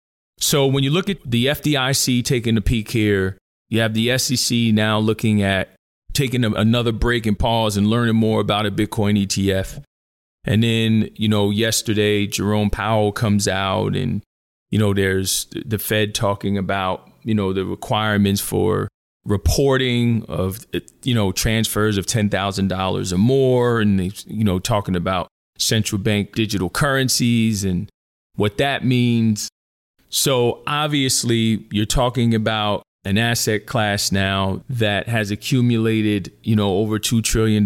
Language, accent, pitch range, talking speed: English, American, 100-120 Hz, 145 wpm